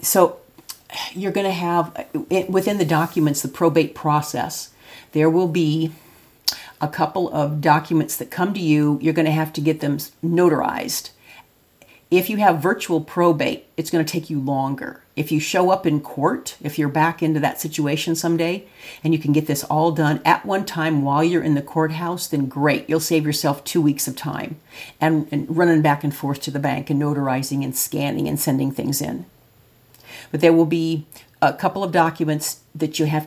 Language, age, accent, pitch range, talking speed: English, 50-69, American, 150-170 Hz, 190 wpm